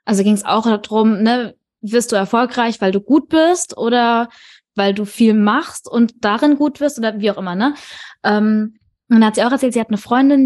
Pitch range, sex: 205-245 Hz, female